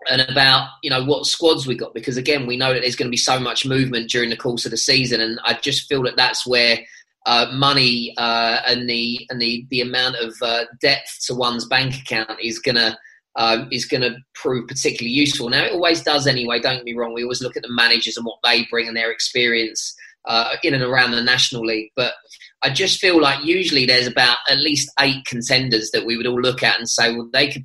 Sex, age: male, 20-39